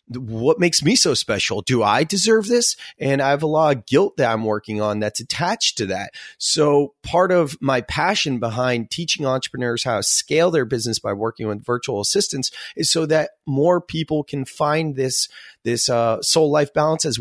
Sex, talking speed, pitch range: male, 195 wpm, 120-180 Hz